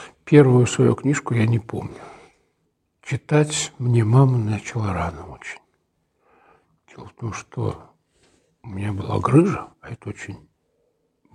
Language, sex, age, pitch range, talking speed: Russian, male, 60-79, 100-135 Hz, 120 wpm